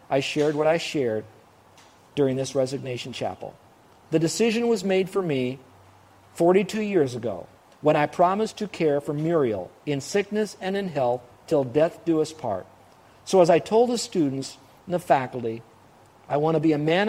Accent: American